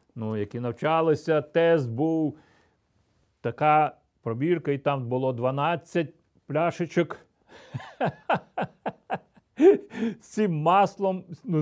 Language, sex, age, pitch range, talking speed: Ukrainian, male, 40-59, 155-190 Hz, 85 wpm